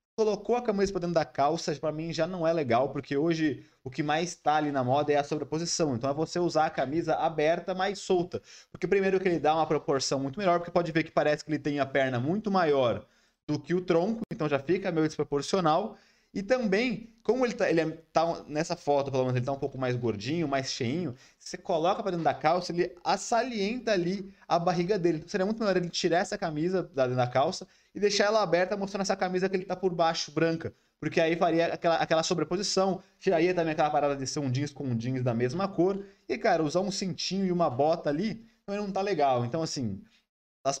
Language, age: Portuguese, 20-39